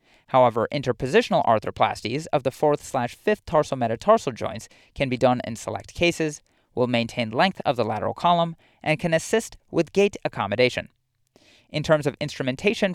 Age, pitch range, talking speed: 30-49, 120-170 Hz, 145 wpm